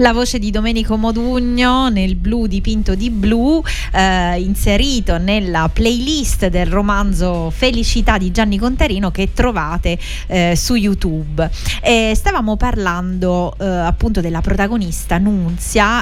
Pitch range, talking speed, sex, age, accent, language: 185-235 Hz, 125 wpm, female, 30-49, native, Italian